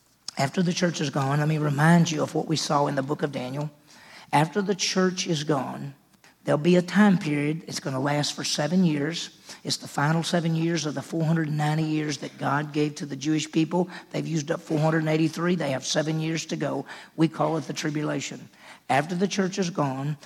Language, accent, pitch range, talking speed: English, American, 150-180 Hz, 210 wpm